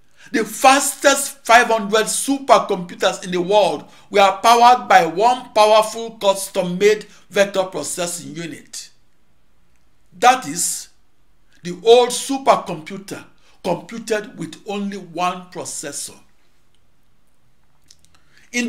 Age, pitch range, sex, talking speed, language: 60-79, 175-230 Hz, male, 85 wpm, English